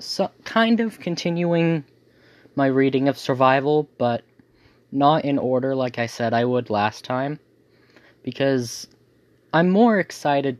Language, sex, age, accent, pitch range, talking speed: English, male, 10-29, American, 105-135 Hz, 130 wpm